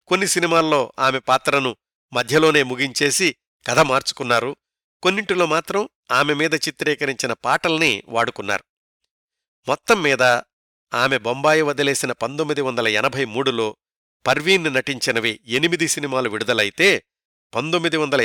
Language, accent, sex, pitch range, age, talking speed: Telugu, native, male, 130-160 Hz, 50-69, 90 wpm